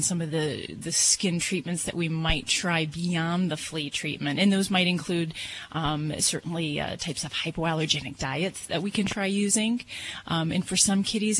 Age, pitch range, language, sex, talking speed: 30-49, 160-195 Hz, English, female, 185 wpm